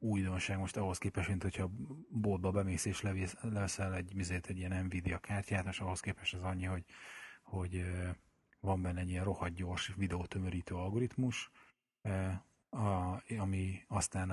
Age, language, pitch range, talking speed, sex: 30-49, Hungarian, 95-100 Hz, 135 wpm, male